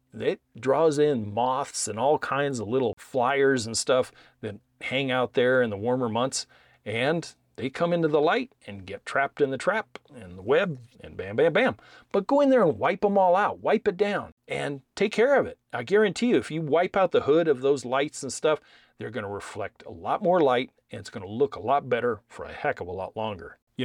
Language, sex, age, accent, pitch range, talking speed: English, male, 40-59, American, 110-155 Hz, 235 wpm